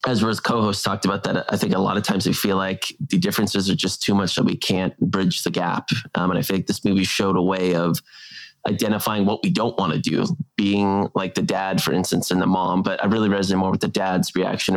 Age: 20-39